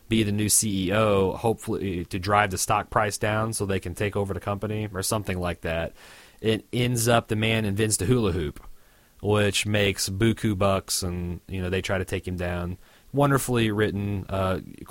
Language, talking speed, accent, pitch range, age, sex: English, 190 wpm, American, 95-115 Hz, 30-49, male